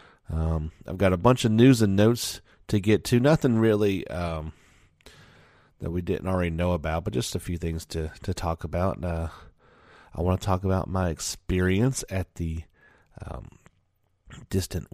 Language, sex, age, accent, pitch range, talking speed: English, male, 30-49, American, 80-105 Hz, 175 wpm